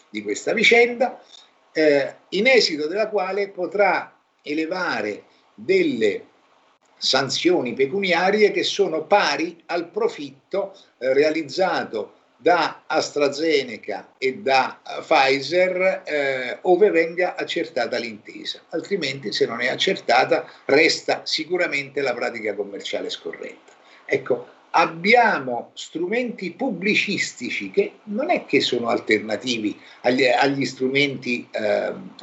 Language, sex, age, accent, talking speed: Italian, male, 50-69, native, 105 wpm